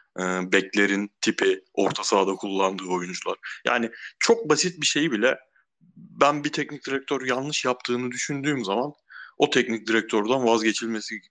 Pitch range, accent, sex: 110-150 Hz, native, male